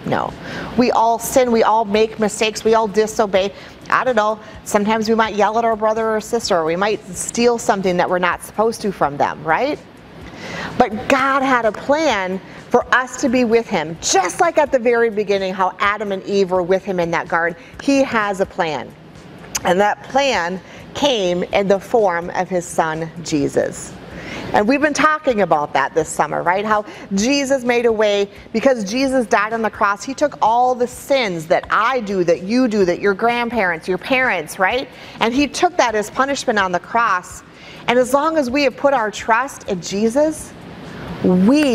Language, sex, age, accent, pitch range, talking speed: English, female, 40-59, American, 185-245 Hz, 195 wpm